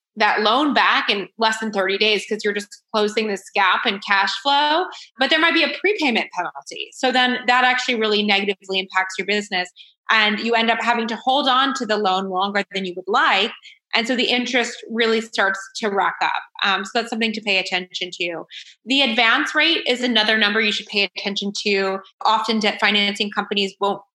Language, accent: English, American